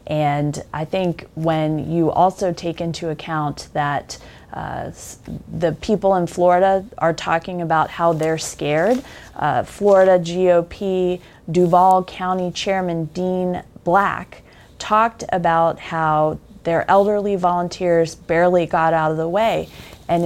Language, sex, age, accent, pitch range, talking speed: English, female, 30-49, American, 165-195 Hz, 125 wpm